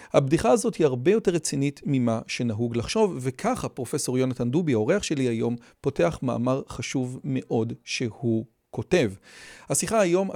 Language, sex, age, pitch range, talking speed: Hebrew, male, 40-59, 125-170 Hz, 140 wpm